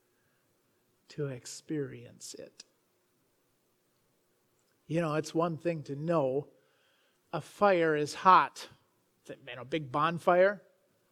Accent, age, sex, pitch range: American, 40-59, male, 145-225 Hz